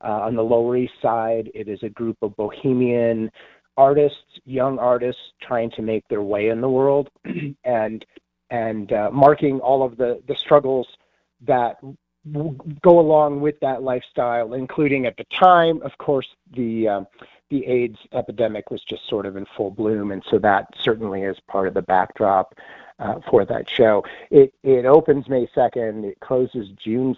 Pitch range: 115-145 Hz